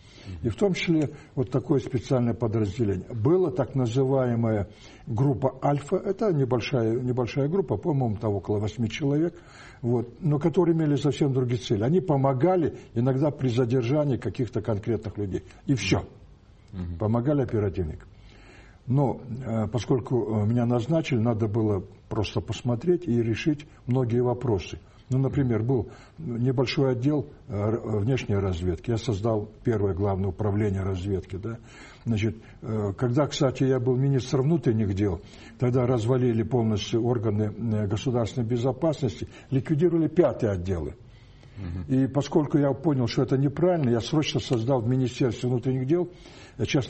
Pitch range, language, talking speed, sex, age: 110-135 Hz, Russian, 125 wpm, male, 60-79